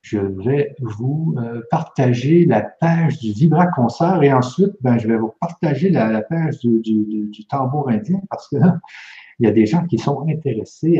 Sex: male